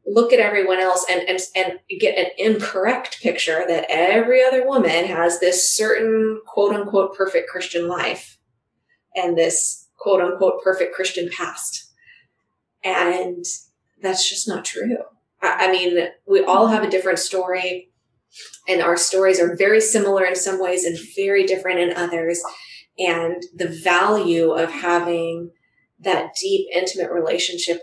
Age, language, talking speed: 20-39, English, 145 wpm